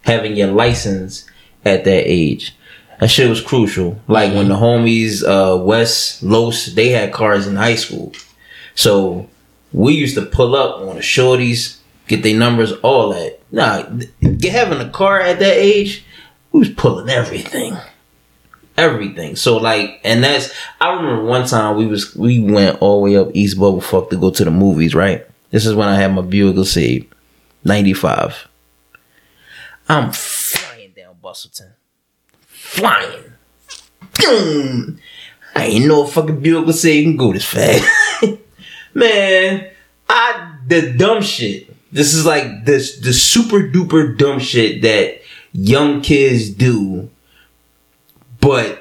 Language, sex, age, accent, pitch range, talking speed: English, male, 20-39, American, 100-150 Hz, 150 wpm